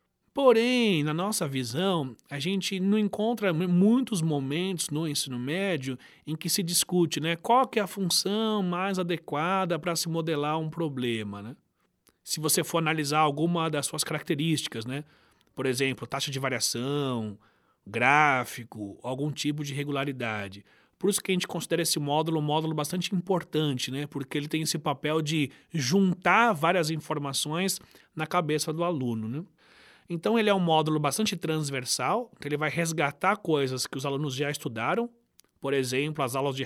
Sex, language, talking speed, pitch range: male, Portuguese, 160 wpm, 135-190 Hz